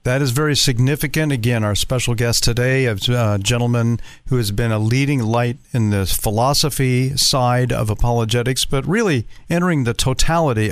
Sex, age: male, 50-69